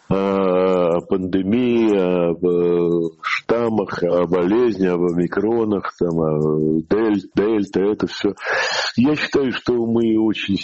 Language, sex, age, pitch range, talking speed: Russian, male, 50-69, 90-110 Hz, 105 wpm